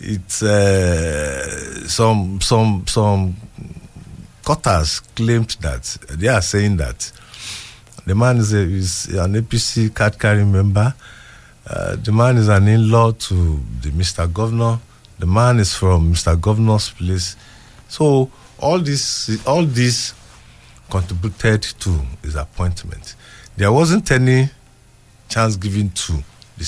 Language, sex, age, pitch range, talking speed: English, male, 50-69, 90-115 Hz, 125 wpm